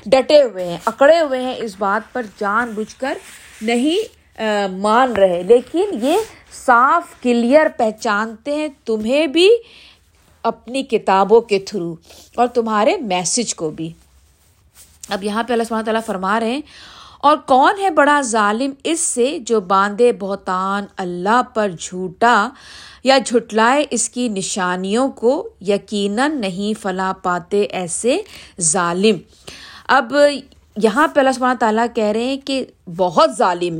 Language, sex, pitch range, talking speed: Urdu, female, 200-275 Hz, 140 wpm